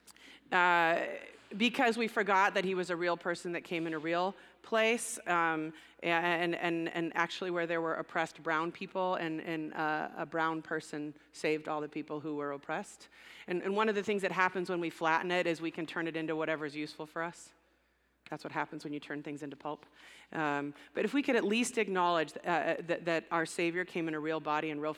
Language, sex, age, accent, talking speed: English, female, 30-49, American, 220 wpm